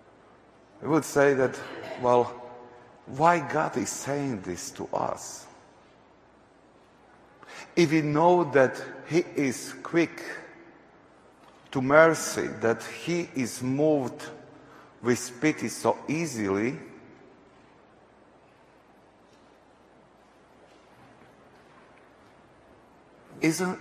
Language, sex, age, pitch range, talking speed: English, male, 60-79, 115-155 Hz, 75 wpm